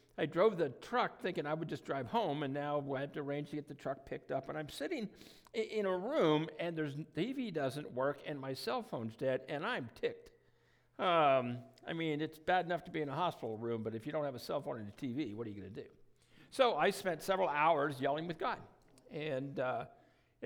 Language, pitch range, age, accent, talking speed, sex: English, 150-215 Hz, 60-79, American, 235 wpm, male